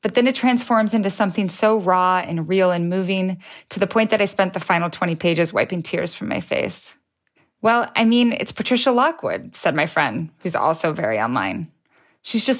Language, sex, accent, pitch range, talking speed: English, female, American, 180-215 Hz, 200 wpm